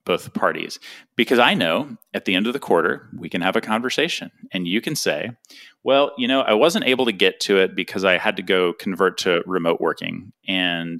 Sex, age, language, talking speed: male, 30-49, English, 220 wpm